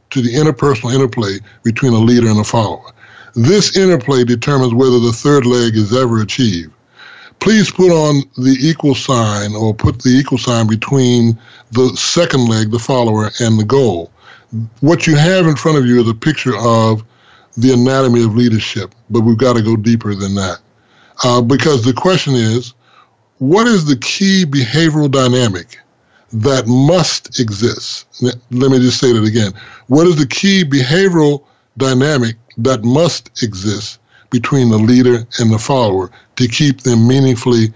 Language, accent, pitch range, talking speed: English, American, 115-135 Hz, 160 wpm